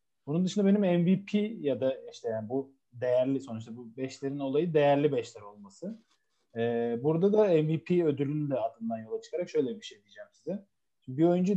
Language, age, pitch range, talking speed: Turkish, 30-49, 135-175 Hz, 170 wpm